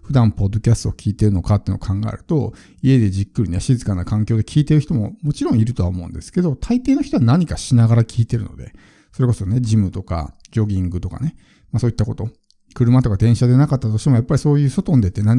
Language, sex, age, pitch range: Japanese, male, 50-69, 100-140 Hz